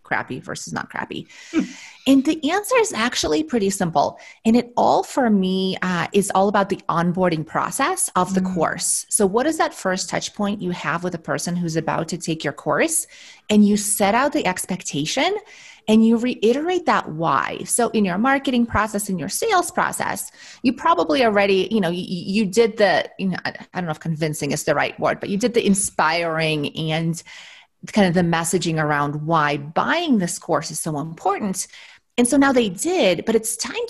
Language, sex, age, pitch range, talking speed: English, female, 30-49, 180-250 Hz, 195 wpm